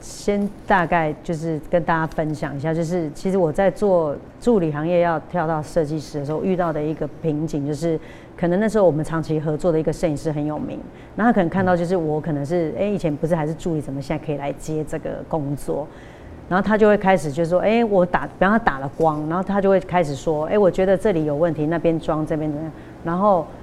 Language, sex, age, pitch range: Chinese, female, 30-49, 155-185 Hz